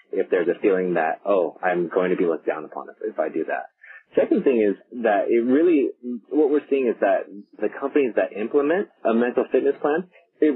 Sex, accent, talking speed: male, American, 210 wpm